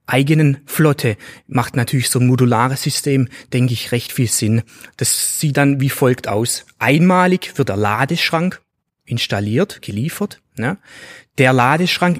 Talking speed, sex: 135 wpm, male